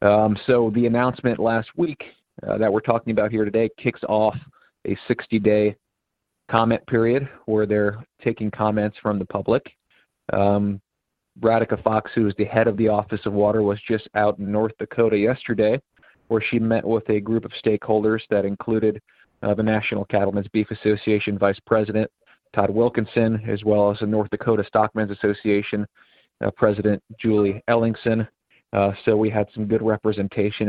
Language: English